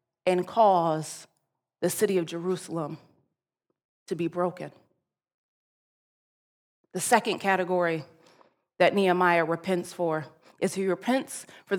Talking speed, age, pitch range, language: 100 wpm, 30-49, 175-235 Hz, English